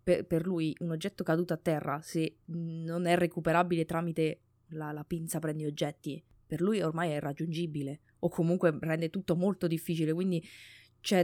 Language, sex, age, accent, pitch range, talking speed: Italian, female, 20-39, native, 155-185 Hz, 160 wpm